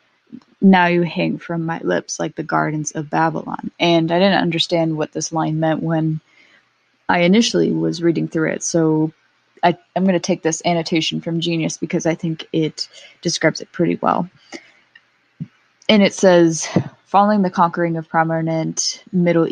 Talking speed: 165 wpm